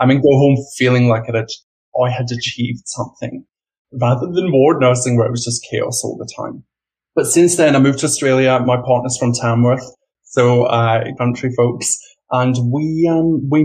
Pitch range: 120-135 Hz